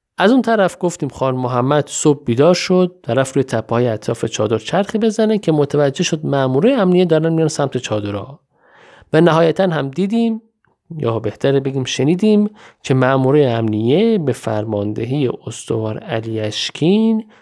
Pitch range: 115-175 Hz